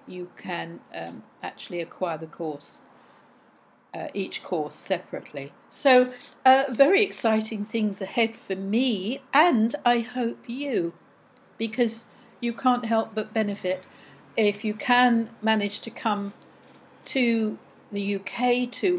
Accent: British